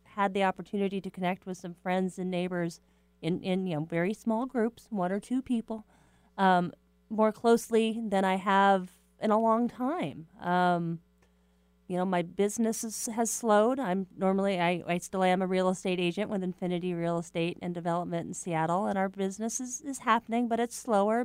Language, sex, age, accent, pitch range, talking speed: English, female, 30-49, American, 170-205 Hz, 185 wpm